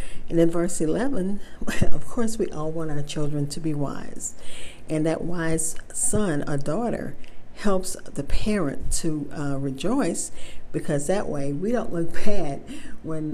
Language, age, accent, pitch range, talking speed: English, 50-69, American, 145-175 Hz, 155 wpm